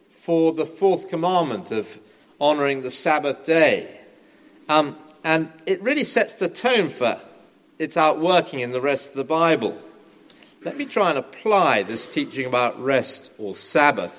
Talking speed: 150 wpm